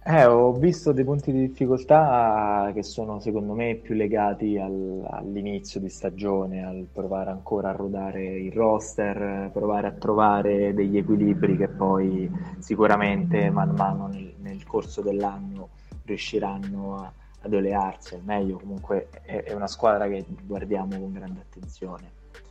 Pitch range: 100-125 Hz